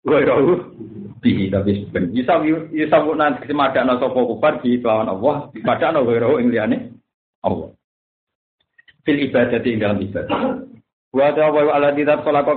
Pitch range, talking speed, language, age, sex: 115-145 Hz, 75 wpm, Indonesian, 50-69, male